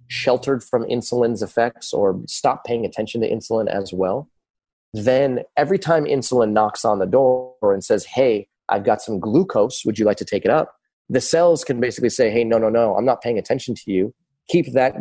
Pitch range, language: 100-125 Hz, English